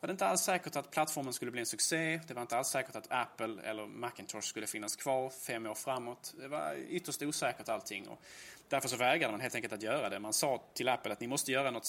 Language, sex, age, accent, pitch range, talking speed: Swedish, male, 20-39, Norwegian, 105-130 Hz, 255 wpm